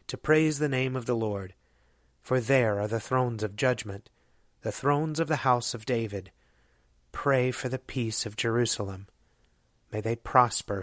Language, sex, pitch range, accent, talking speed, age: English, male, 105-125 Hz, American, 165 wpm, 30-49